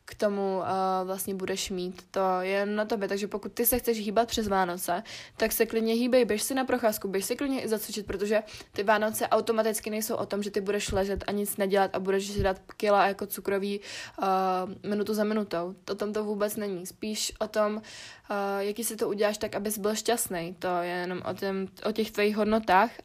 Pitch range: 195-220 Hz